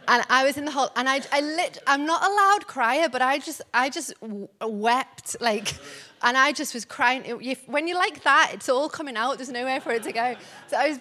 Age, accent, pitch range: 30-49, British, 240-295 Hz